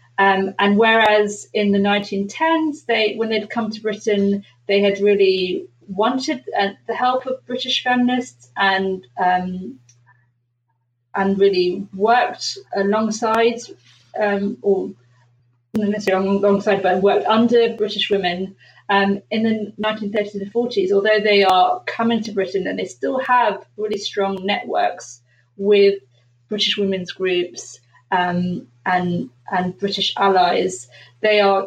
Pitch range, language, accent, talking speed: 180-205 Hz, English, British, 130 wpm